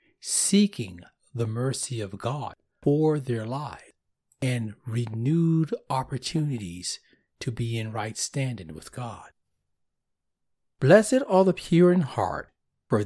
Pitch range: 115-155 Hz